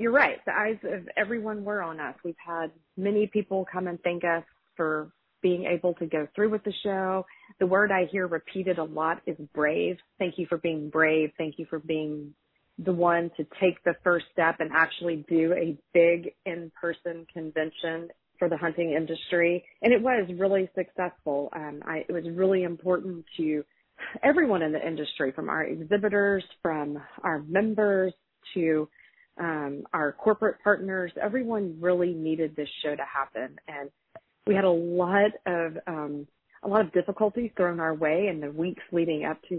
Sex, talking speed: female, 175 wpm